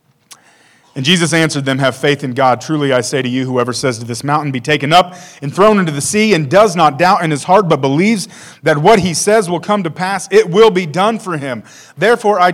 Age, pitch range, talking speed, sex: 30-49, 135-185 Hz, 245 wpm, male